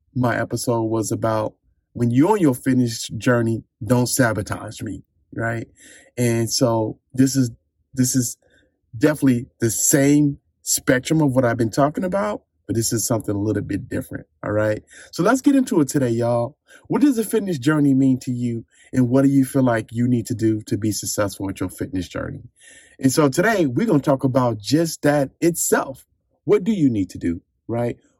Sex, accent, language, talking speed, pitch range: male, American, English, 190 wpm, 110-140 Hz